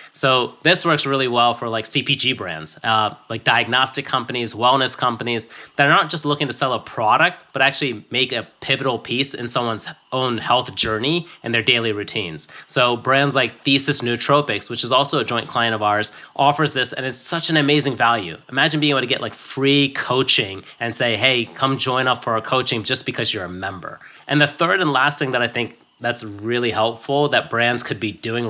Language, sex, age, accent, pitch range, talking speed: English, male, 20-39, American, 115-145 Hz, 210 wpm